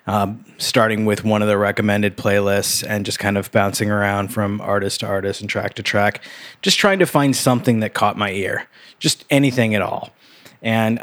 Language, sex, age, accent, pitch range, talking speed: English, male, 20-39, American, 100-125 Hz, 195 wpm